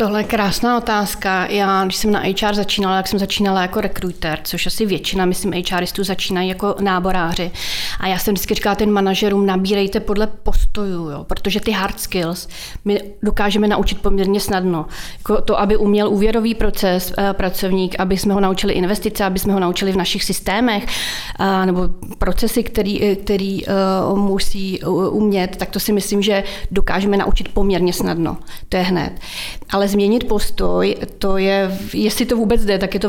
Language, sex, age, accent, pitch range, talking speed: Czech, female, 30-49, native, 185-205 Hz, 170 wpm